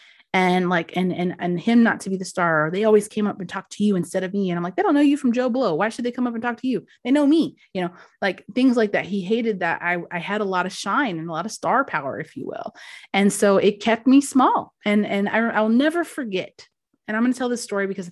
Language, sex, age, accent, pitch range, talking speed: English, female, 30-49, American, 190-290 Hz, 295 wpm